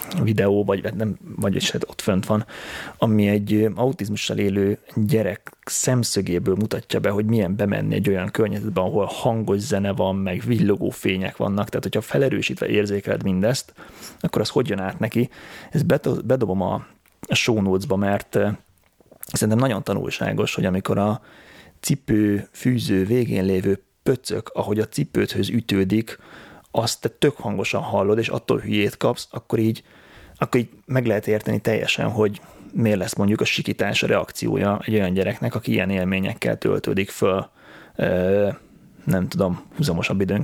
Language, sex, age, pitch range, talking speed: Hungarian, male, 30-49, 100-110 Hz, 145 wpm